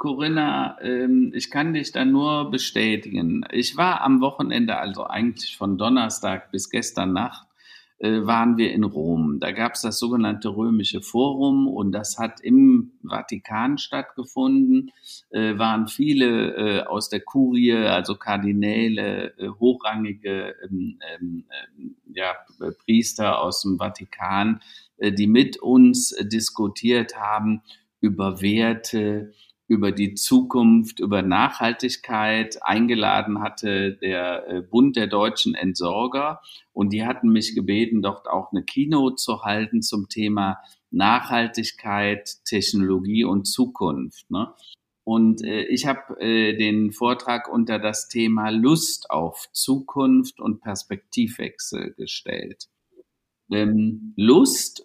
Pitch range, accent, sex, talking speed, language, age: 105-135 Hz, German, male, 105 wpm, German, 50-69